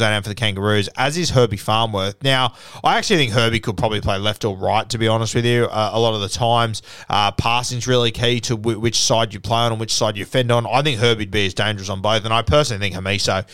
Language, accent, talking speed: English, Australian, 265 wpm